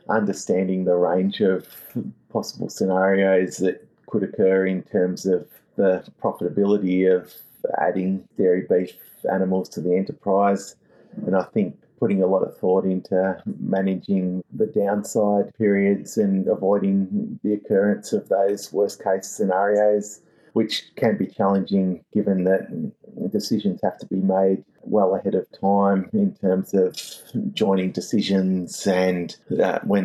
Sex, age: male, 30-49